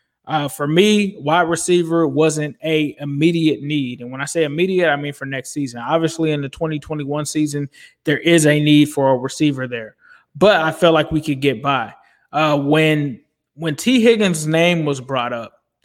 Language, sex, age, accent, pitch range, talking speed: English, male, 20-39, American, 150-180 Hz, 185 wpm